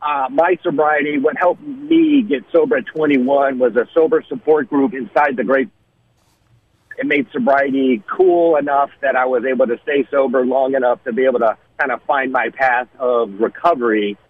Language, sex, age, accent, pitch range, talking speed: English, male, 50-69, American, 125-165 Hz, 180 wpm